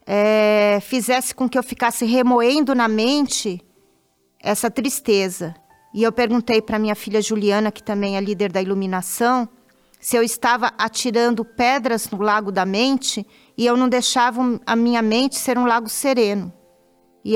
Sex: female